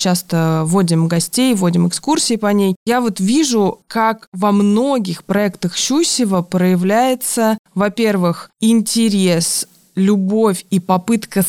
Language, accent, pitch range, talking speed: Russian, native, 180-220 Hz, 110 wpm